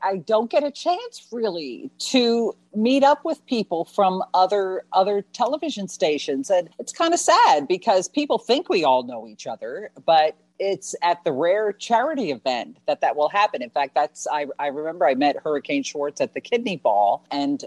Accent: American